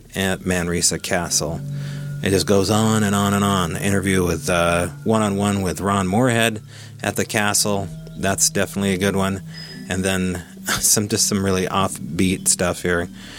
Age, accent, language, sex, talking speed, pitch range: 30-49, American, English, male, 155 wpm, 90-110 Hz